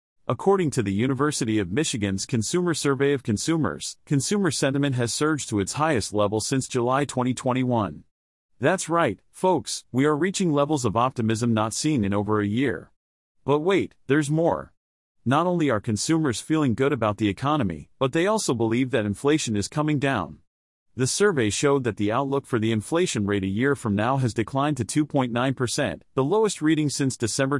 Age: 40-59